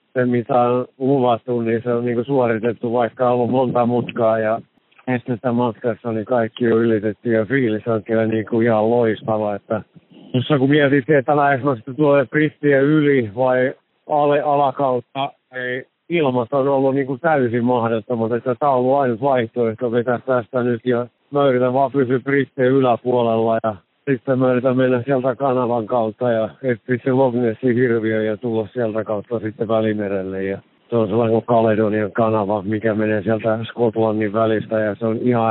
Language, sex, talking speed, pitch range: Finnish, male, 160 wpm, 110-125 Hz